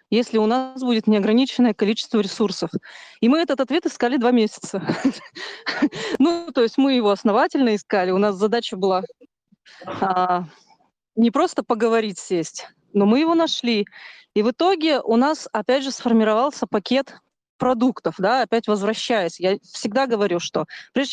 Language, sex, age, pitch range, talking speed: Russian, female, 30-49, 200-255 Hz, 145 wpm